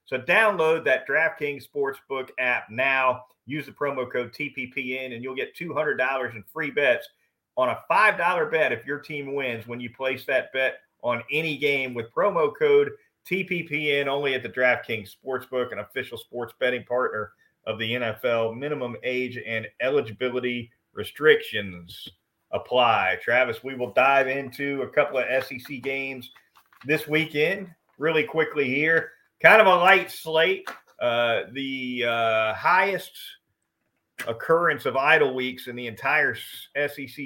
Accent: American